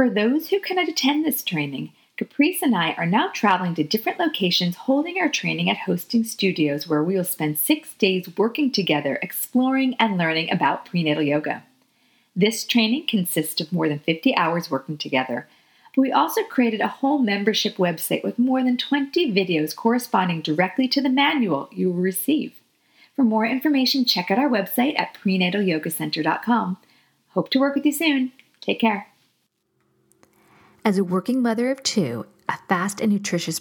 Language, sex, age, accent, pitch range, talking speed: English, female, 40-59, American, 160-245 Hz, 165 wpm